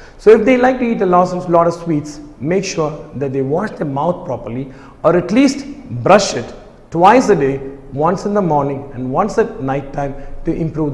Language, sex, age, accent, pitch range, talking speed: Tamil, male, 50-69, native, 145-205 Hz, 205 wpm